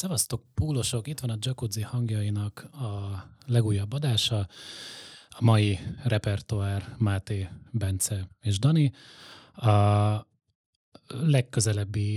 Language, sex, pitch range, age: Hungarian, male, 95-115 Hz, 30-49